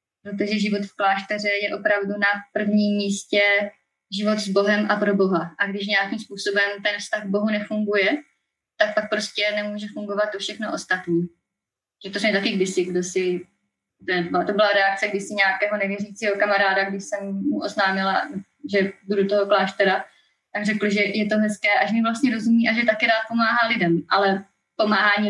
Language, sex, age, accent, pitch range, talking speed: Czech, female, 20-39, native, 195-215 Hz, 180 wpm